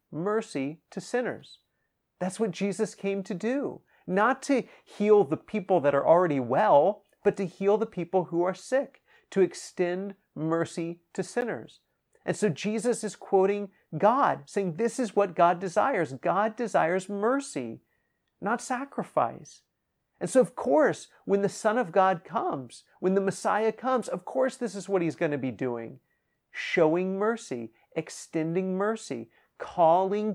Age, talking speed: 40-59, 150 wpm